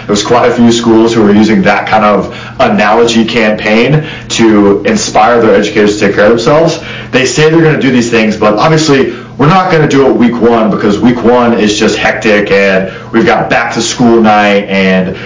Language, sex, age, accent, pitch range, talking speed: English, male, 30-49, American, 110-135 Hz, 210 wpm